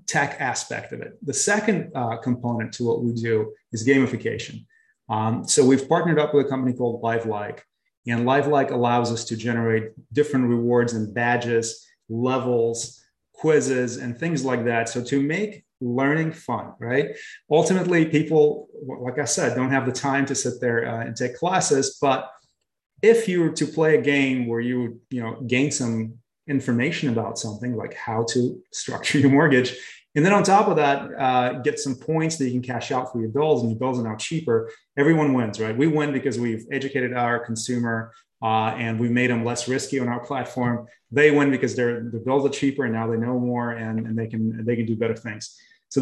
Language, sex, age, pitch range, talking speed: English, male, 30-49, 115-140 Hz, 200 wpm